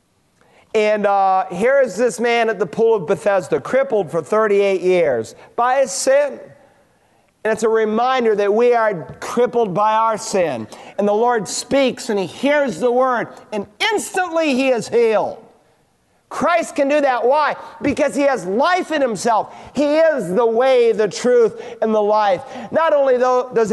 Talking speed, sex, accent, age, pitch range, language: 165 wpm, male, American, 40-59, 215-270 Hz, English